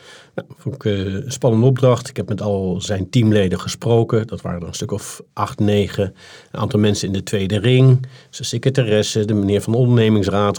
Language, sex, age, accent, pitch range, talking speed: Dutch, male, 50-69, Dutch, 95-120 Hz, 205 wpm